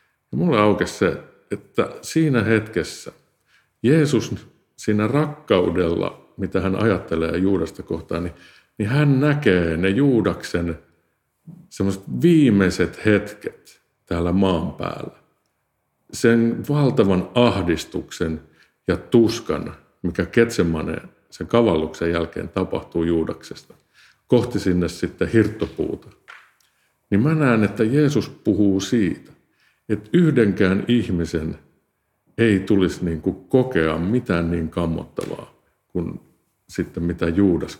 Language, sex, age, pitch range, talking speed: Finnish, male, 50-69, 85-115 Hz, 95 wpm